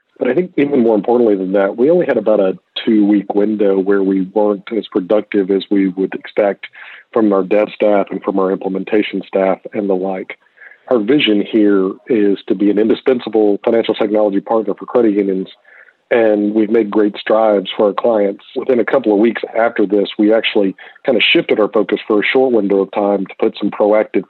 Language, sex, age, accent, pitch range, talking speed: English, male, 40-59, American, 100-110 Hz, 205 wpm